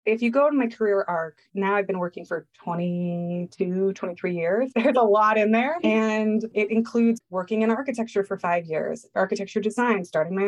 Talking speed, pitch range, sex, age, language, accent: 190 wpm, 185-225 Hz, female, 20-39, English, American